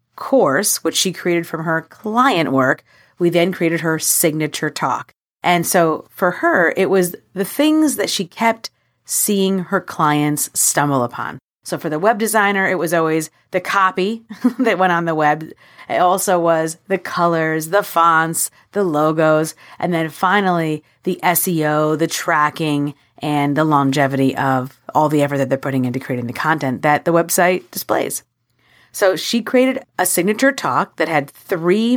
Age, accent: 40-59, American